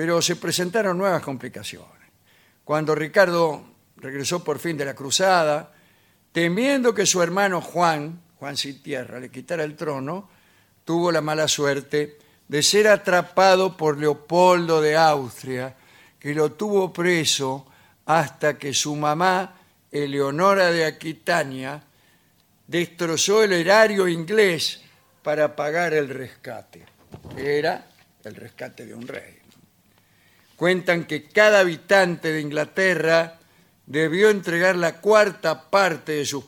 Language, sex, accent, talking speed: Spanish, male, Argentinian, 120 wpm